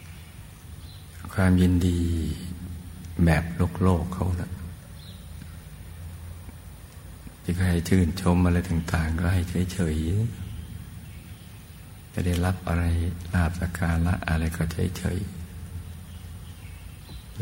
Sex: male